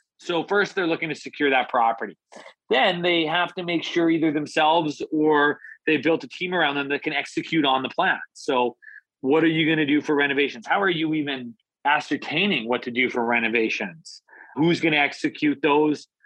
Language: English